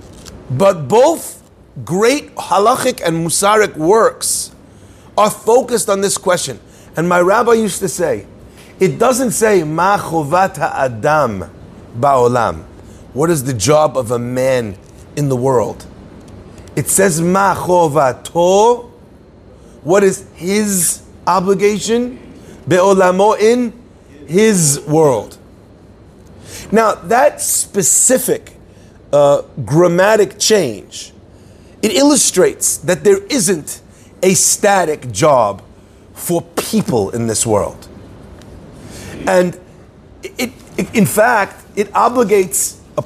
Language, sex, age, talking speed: English, male, 40-59, 100 wpm